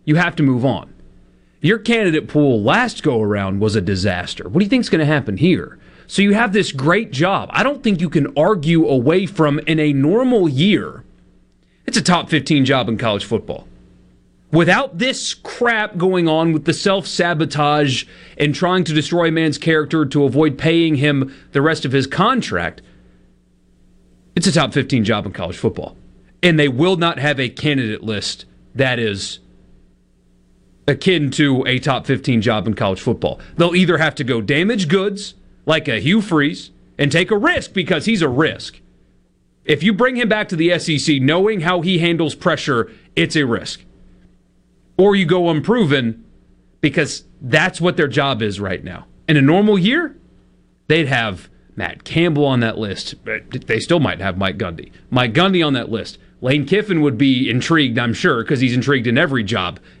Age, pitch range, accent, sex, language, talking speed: 40-59, 110-175 Hz, American, male, English, 180 wpm